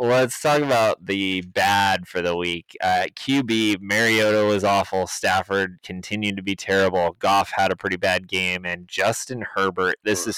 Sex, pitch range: male, 95-110 Hz